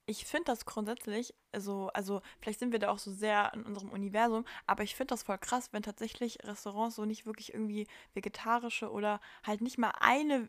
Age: 10-29